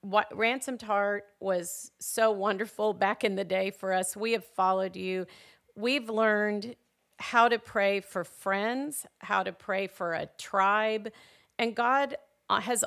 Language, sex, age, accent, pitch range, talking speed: English, female, 40-59, American, 190-220 Hz, 150 wpm